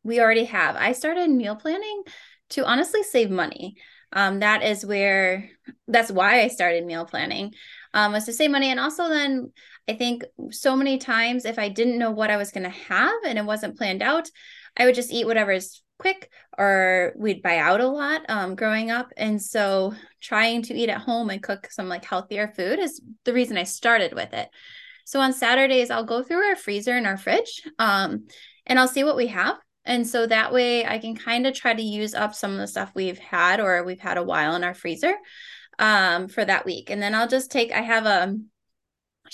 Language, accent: English, American